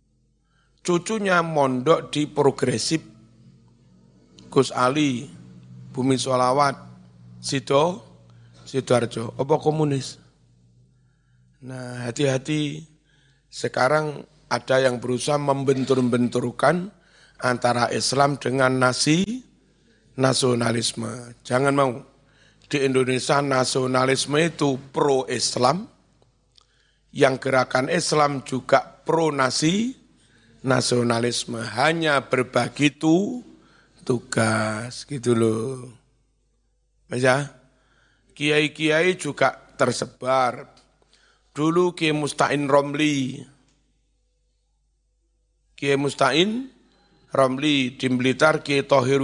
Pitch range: 120-145 Hz